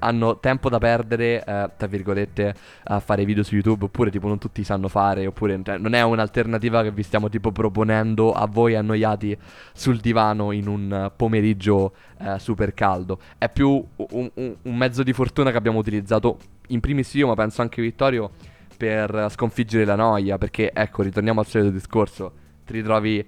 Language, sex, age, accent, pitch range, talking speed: Italian, male, 20-39, native, 105-120 Hz, 175 wpm